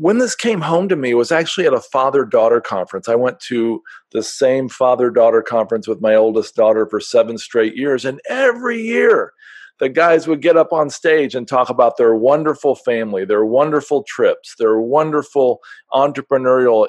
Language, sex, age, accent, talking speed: English, male, 50-69, American, 180 wpm